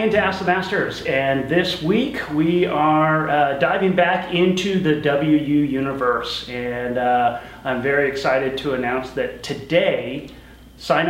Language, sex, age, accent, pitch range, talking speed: English, male, 30-49, American, 140-175 Hz, 140 wpm